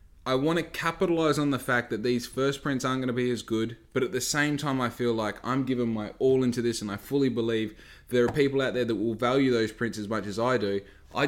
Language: English